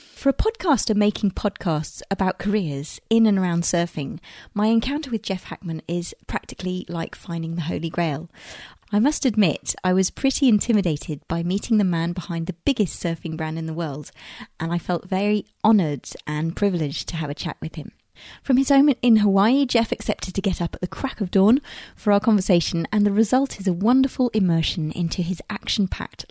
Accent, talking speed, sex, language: British, 190 wpm, female, English